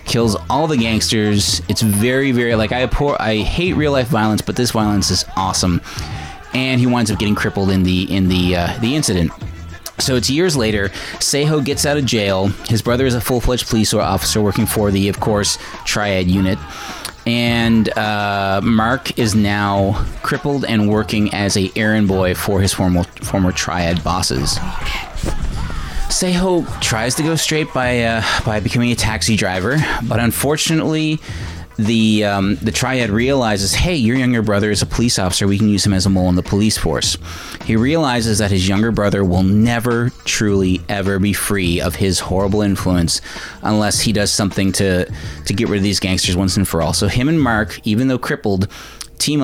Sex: male